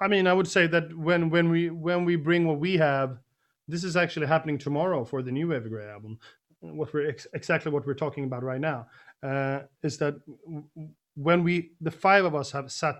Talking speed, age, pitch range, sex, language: 210 wpm, 30-49, 135-160 Hz, male, English